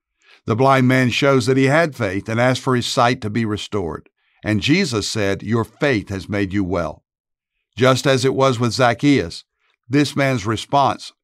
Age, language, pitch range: 60-79, English, 105-135 Hz